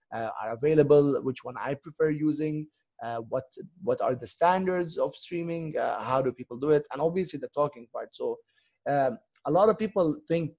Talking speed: 195 wpm